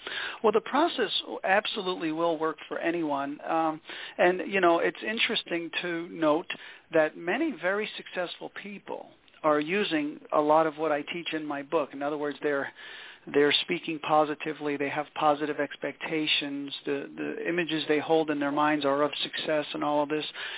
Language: English